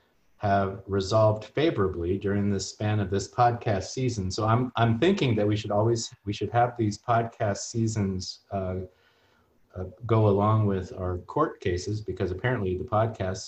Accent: American